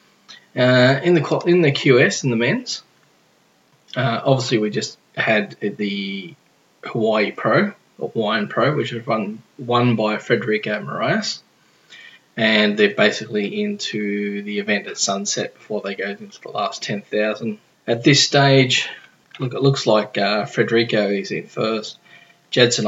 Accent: Australian